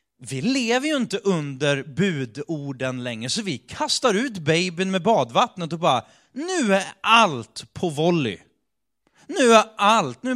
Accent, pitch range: native, 125-185 Hz